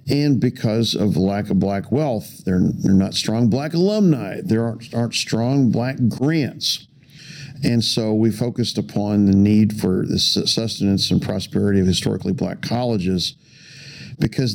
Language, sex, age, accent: English, male, 50-69, American